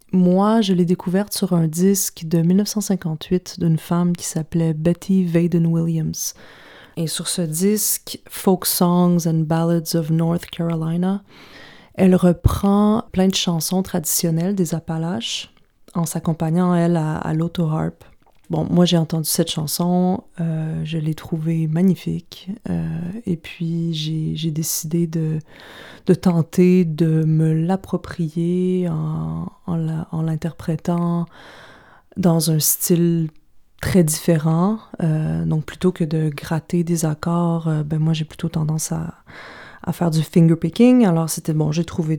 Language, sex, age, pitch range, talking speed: English, female, 30-49, 160-180 Hz, 135 wpm